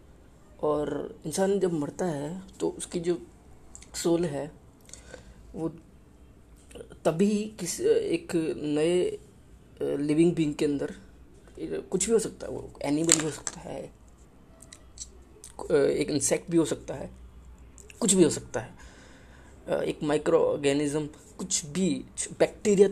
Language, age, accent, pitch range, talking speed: Hindi, 20-39, native, 130-180 Hz, 120 wpm